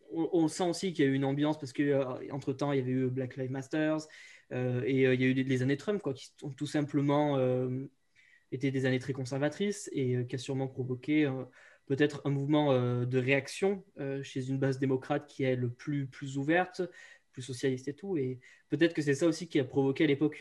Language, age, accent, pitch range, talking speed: French, 20-39, French, 135-155 Hz, 225 wpm